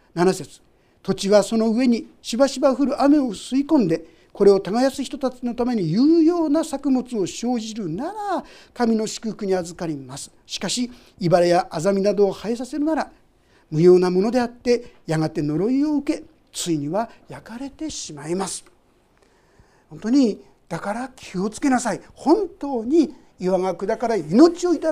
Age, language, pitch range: 50-69, Japanese, 175-255 Hz